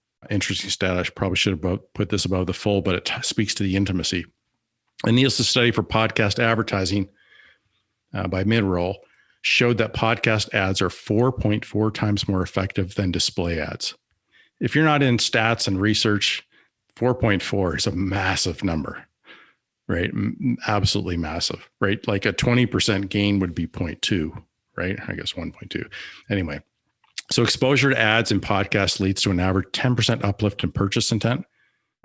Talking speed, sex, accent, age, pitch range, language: 155 wpm, male, American, 50-69, 95-115 Hz, English